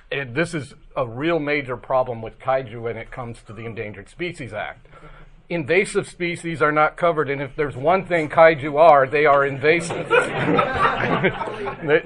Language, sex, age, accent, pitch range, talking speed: English, male, 40-59, American, 120-150 Hz, 165 wpm